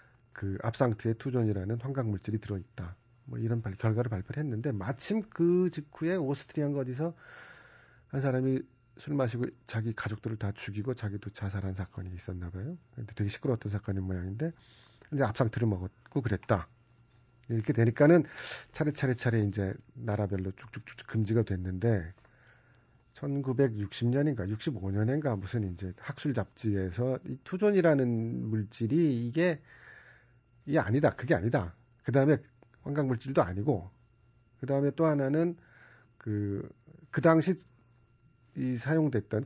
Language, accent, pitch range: Korean, native, 110-145 Hz